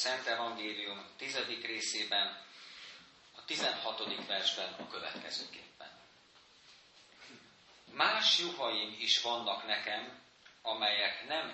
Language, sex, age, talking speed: Hungarian, male, 40-59, 85 wpm